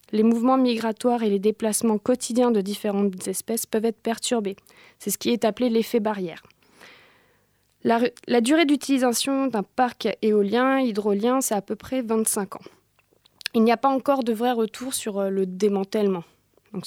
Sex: female